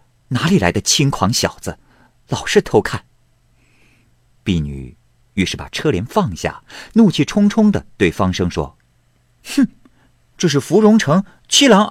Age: 50-69